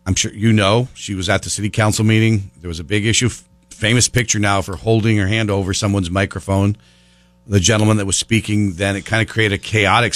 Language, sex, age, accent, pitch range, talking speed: English, male, 50-69, American, 95-120 Hz, 225 wpm